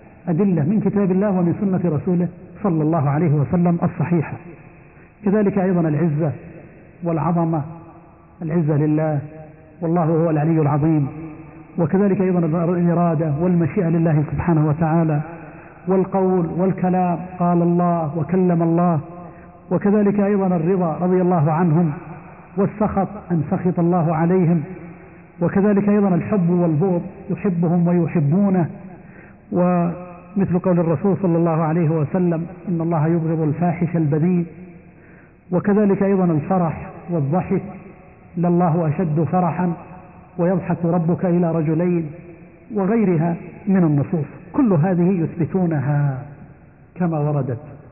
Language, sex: Arabic, male